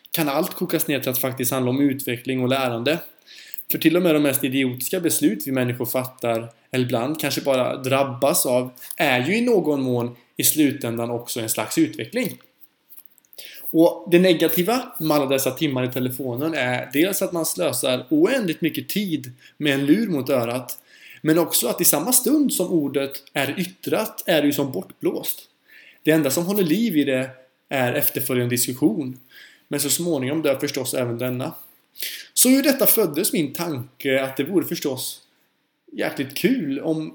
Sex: male